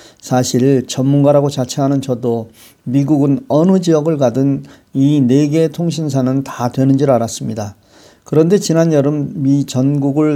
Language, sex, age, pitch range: Korean, male, 40-59, 125-155 Hz